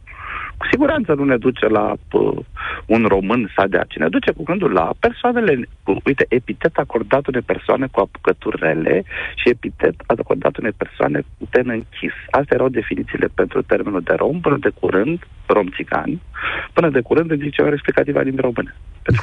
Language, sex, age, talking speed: Romanian, male, 50-69, 165 wpm